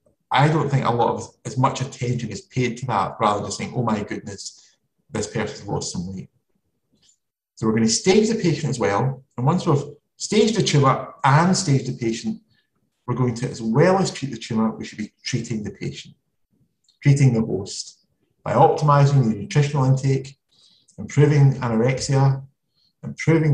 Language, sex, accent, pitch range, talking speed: English, male, British, 110-140 Hz, 175 wpm